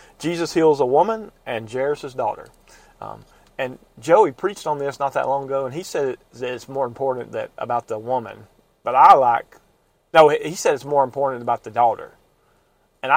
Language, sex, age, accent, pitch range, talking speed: English, male, 40-59, American, 130-155 Hz, 185 wpm